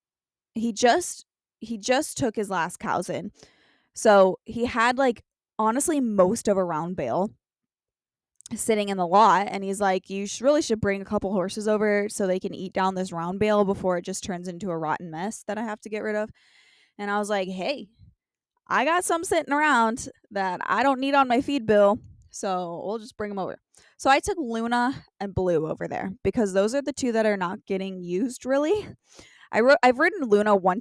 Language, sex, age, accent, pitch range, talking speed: English, female, 20-39, American, 195-250 Hz, 205 wpm